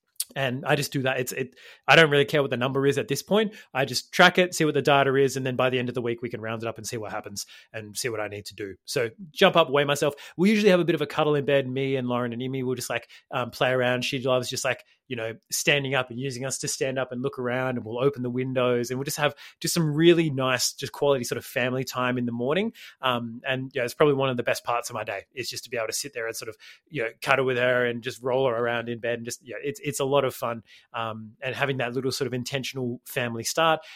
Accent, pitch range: Australian, 125-145 Hz